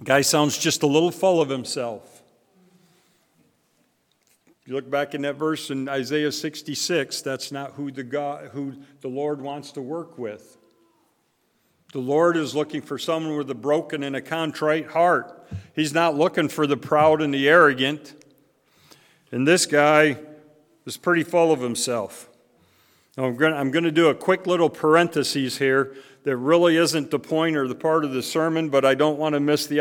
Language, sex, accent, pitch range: English, male, American, 140-165 Hz